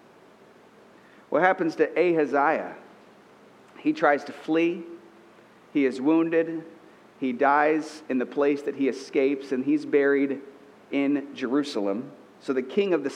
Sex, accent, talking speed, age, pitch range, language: male, American, 130 wpm, 40-59, 145-220 Hz, English